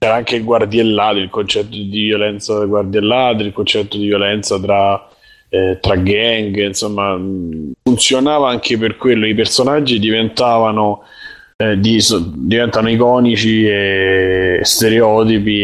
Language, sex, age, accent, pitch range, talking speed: Italian, male, 20-39, native, 100-120 Hz, 125 wpm